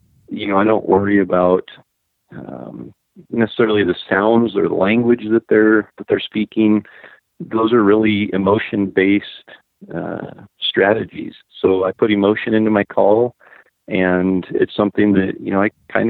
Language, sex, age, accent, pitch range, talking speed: English, male, 40-59, American, 95-110 Hz, 140 wpm